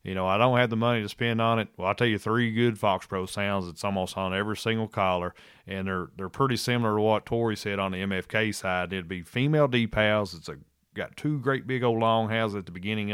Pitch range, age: 95-120 Hz, 30-49